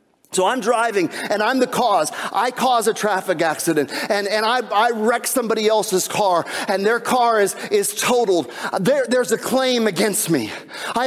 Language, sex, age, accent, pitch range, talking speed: English, male, 40-59, American, 220-280 Hz, 180 wpm